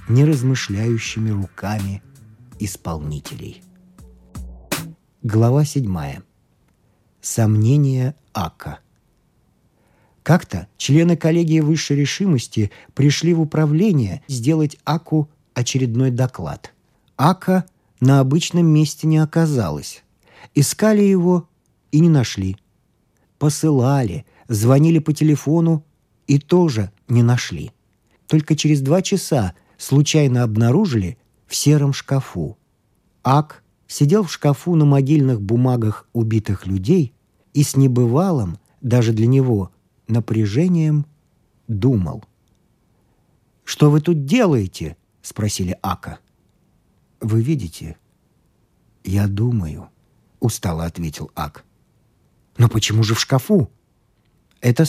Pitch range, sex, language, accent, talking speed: 110-155 Hz, male, Russian, native, 90 wpm